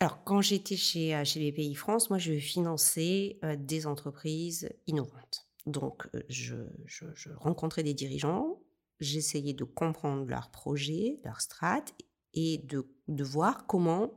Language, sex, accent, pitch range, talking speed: French, female, French, 145-180 Hz, 140 wpm